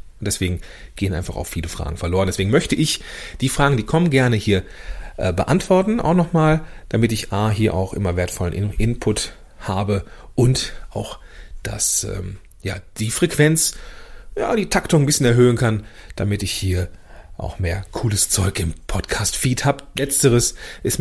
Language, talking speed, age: German, 160 wpm, 40-59